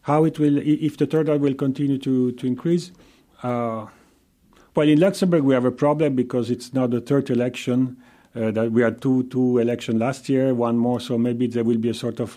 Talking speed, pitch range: 220 wpm, 115-135 Hz